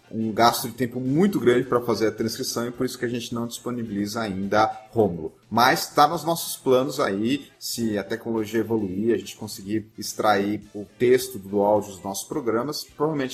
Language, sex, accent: English, male, Brazilian